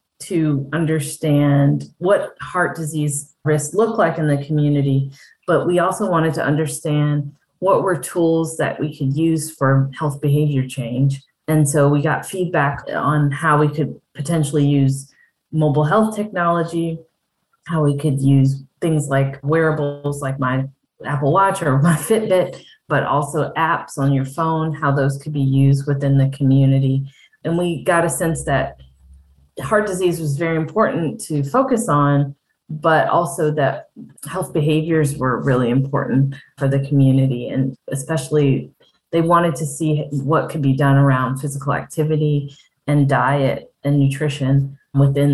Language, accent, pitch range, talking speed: English, American, 135-160 Hz, 150 wpm